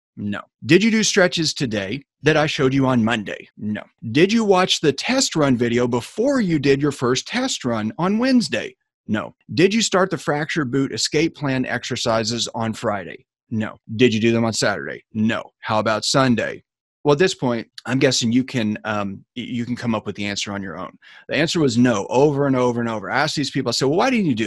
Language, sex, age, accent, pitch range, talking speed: English, male, 30-49, American, 115-155 Hz, 225 wpm